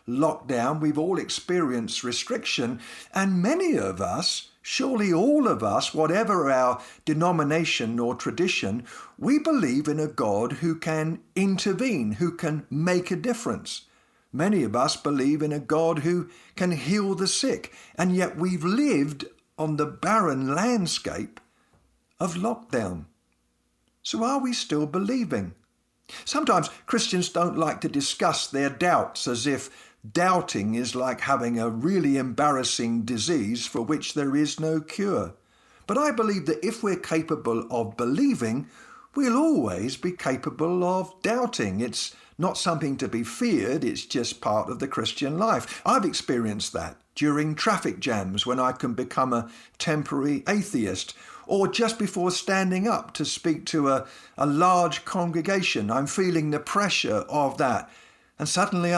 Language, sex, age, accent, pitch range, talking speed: English, male, 50-69, British, 135-190 Hz, 145 wpm